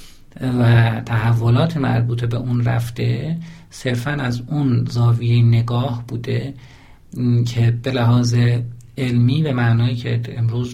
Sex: male